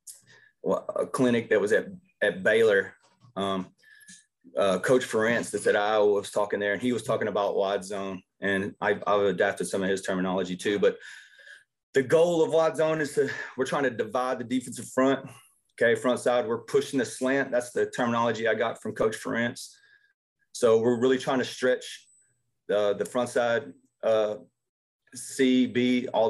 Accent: American